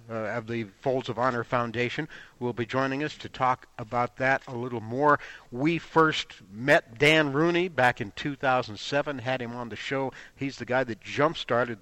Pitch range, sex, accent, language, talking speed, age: 120-150 Hz, male, American, English, 185 wpm, 60-79